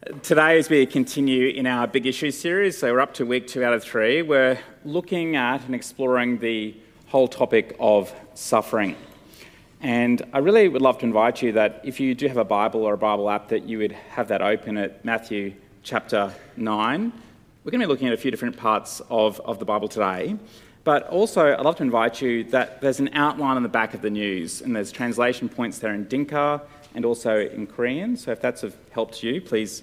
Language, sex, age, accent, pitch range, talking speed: English, male, 30-49, Australian, 105-135 Hz, 215 wpm